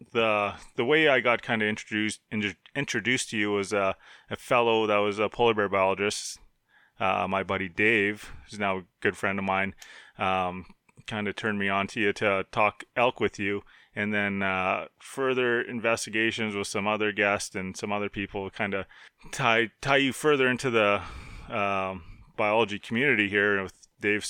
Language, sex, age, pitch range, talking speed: English, male, 30-49, 95-110 Hz, 180 wpm